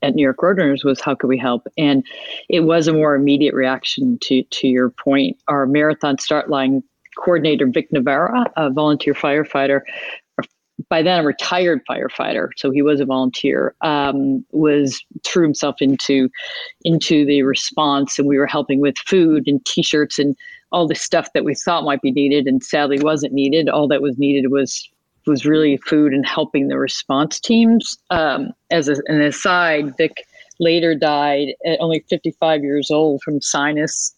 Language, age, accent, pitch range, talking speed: English, 40-59, American, 140-170 Hz, 170 wpm